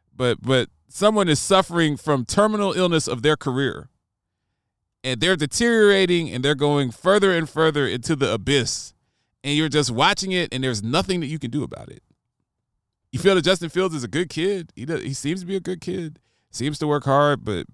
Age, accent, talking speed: 30-49, American, 205 wpm